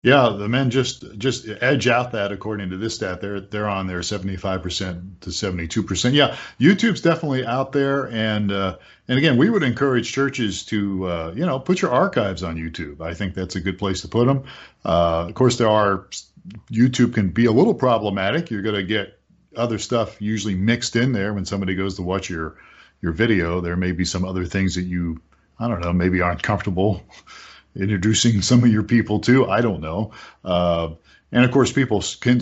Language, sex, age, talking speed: English, male, 40-59, 205 wpm